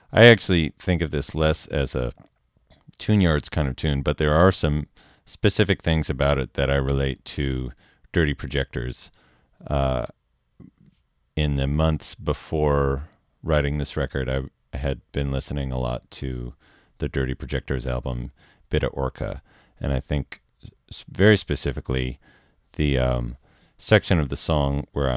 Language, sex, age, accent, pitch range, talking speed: English, male, 40-59, American, 65-80 Hz, 145 wpm